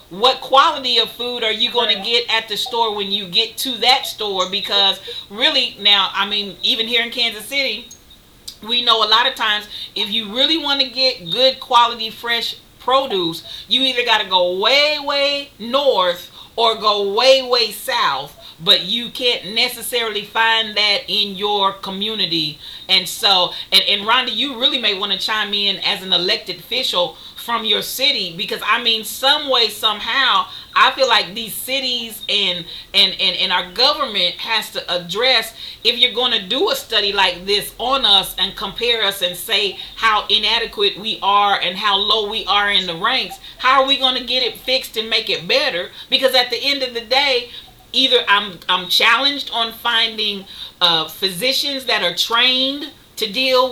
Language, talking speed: English, 180 wpm